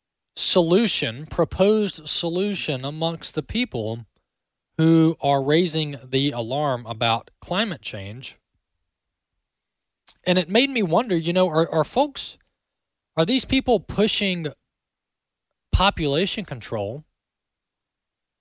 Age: 20-39